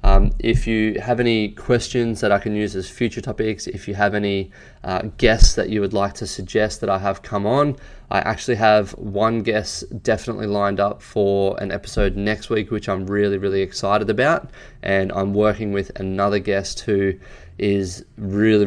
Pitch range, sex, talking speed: 95-105 Hz, male, 185 wpm